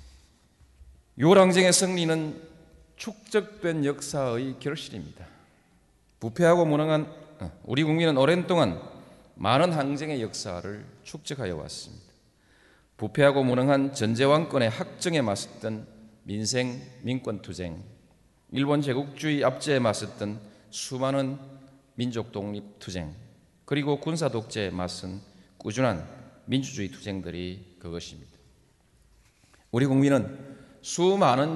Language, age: Korean, 40-59